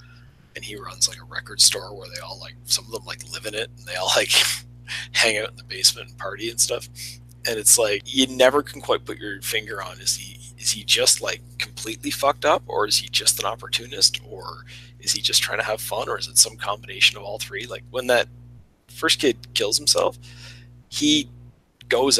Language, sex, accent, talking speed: English, male, American, 220 wpm